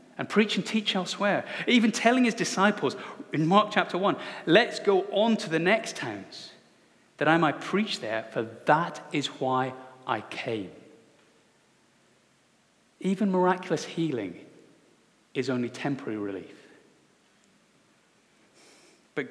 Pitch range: 140-190 Hz